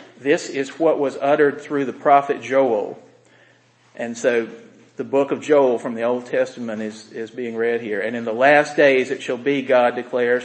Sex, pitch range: male, 120-140 Hz